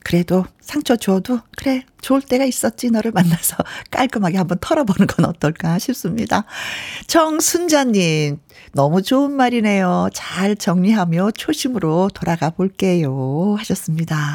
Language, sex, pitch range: Korean, female, 180-265 Hz